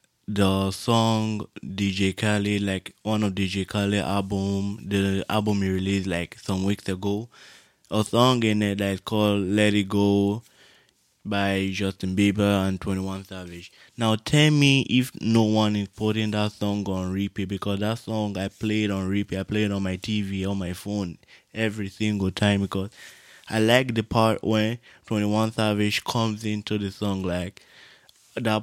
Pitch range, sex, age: 95-105 Hz, male, 20-39